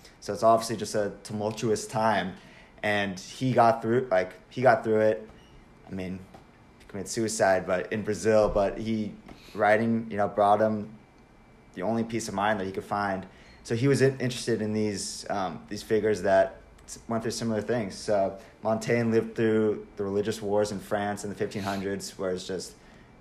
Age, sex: 20-39, male